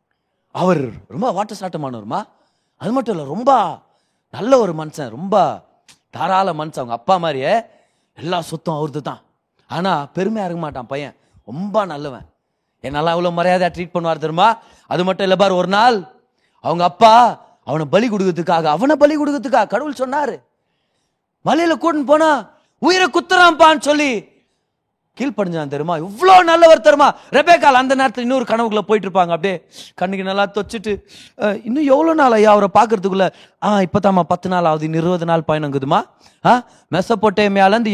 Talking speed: 140 wpm